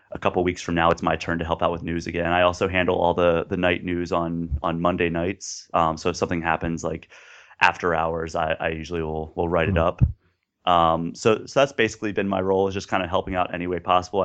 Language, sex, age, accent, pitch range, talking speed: English, male, 30-49, American, 85-95 Hz, 255 wpm